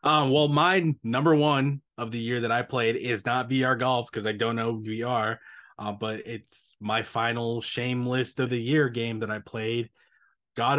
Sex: male